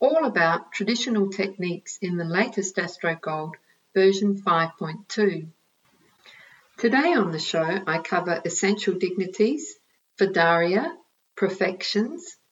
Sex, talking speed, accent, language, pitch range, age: female, 100 wpm, Australian, English, 180-215 Hz, 50-69